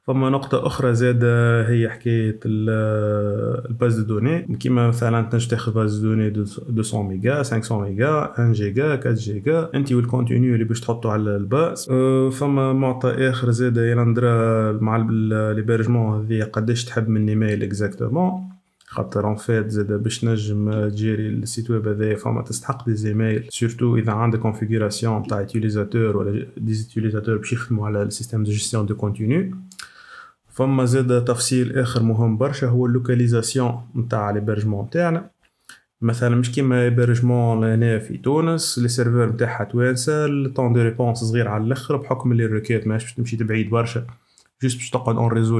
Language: Arabic